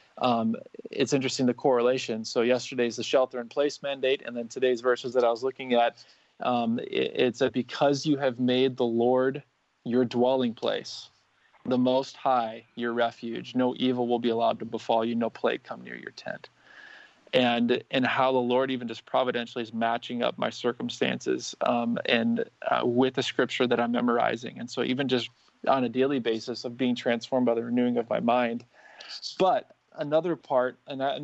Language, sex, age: English, male, 20-39